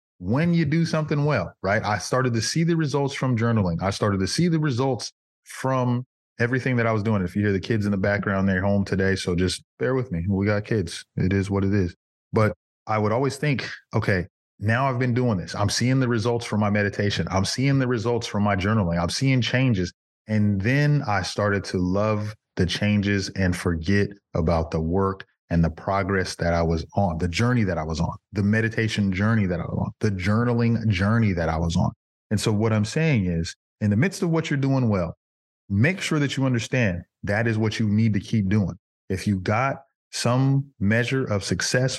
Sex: male